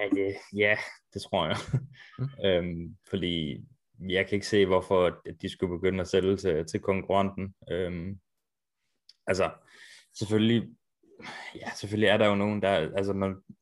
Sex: male